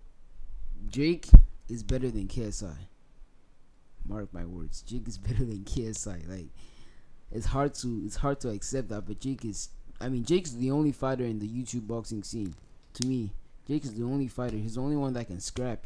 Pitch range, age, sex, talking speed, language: 105-130 Hz, 20-39, male, 190 wpm, English